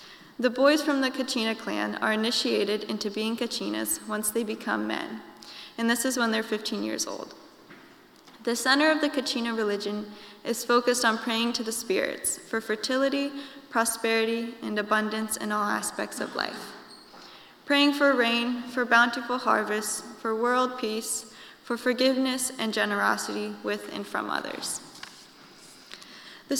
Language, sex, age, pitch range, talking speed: English, female, 20-39, 220-255 Hz, 145 wpm